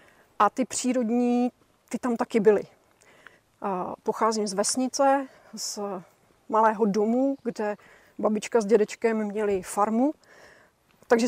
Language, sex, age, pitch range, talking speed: Czech, female, 40-59, 210-240 Hz, 105 wpm